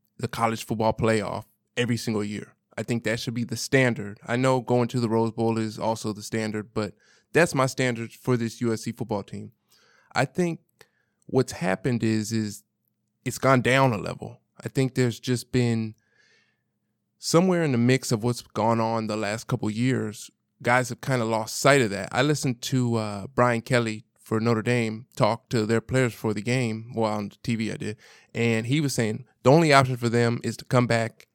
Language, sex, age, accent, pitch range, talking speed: English, male, 20-39, American, 110-125 Hz, 200 wpm